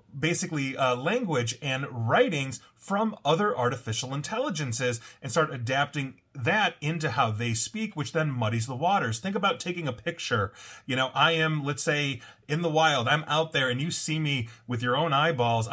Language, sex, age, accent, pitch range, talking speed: English, male, 30-49, American, 120-160 Hz, 180 wpm